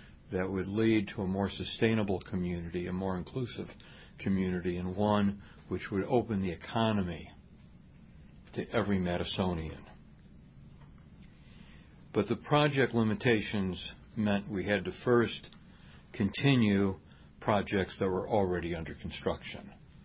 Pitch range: 90-110 Hz